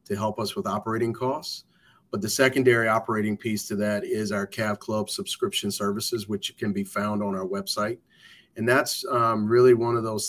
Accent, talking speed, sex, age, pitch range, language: American, 190 wpm, male, 40-59, 105-120 Hz, English